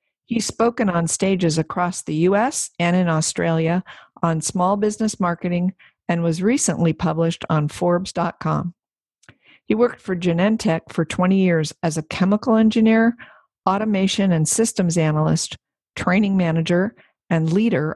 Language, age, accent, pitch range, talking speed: English, 50-69, American, 165-200 Hz, 130 wpm